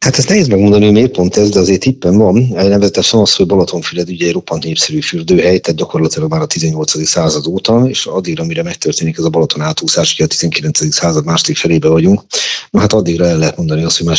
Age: 40-59